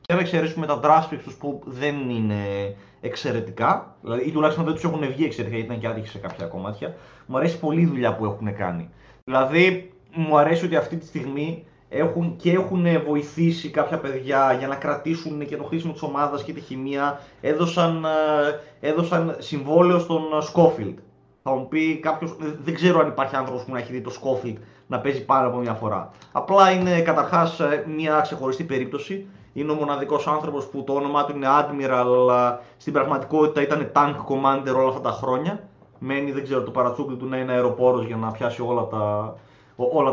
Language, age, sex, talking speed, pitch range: Greek, 20-39, male, 180 wpm, 125-165 Hz